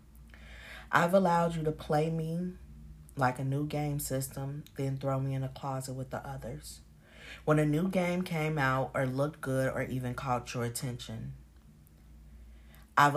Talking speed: 160 wpm